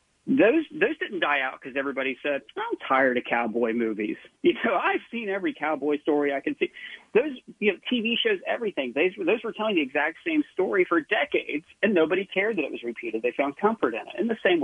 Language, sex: English, male